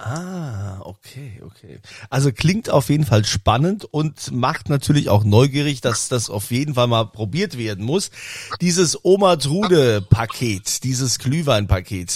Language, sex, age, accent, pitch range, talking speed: German, male, 40-59, German, 105-150 Hz, 135 wpm